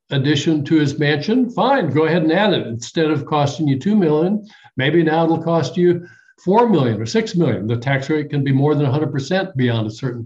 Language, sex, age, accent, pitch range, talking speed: English, male, 60-79, American, 130-165 Hz, 215 wpm